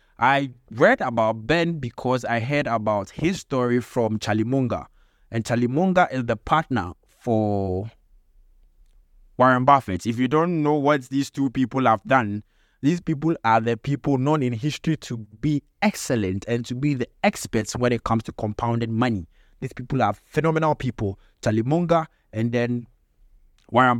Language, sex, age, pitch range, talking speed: English, male, 20-39, 110-145 Hz, 155 wpm